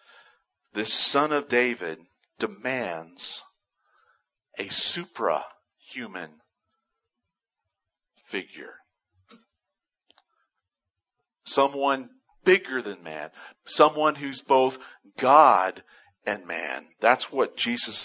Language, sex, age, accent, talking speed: English, male, 40-59, American, 70 wpm